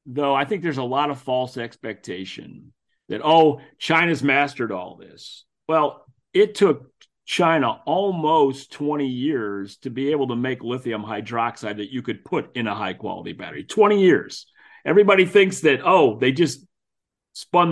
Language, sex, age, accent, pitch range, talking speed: English, male, 40-59, American, 125-160 Hz, 155 wpm